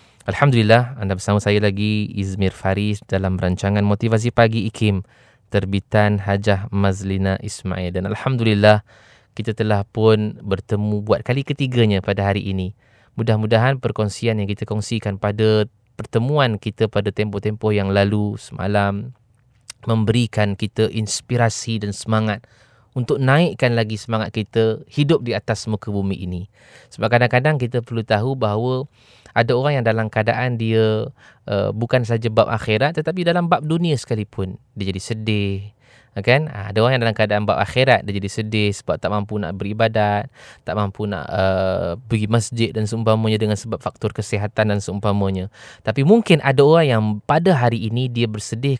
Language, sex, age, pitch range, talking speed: English, male, 20-39, 105-120 Hz, 150 wpm